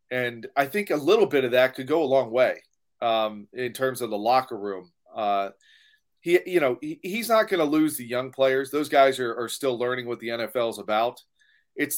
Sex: male